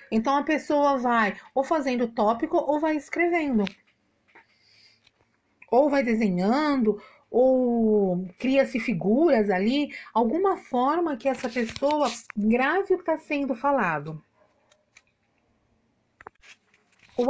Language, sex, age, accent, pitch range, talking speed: Portuguese, female, 40-59, Brazilian, 215-280 Hz, 100 wpm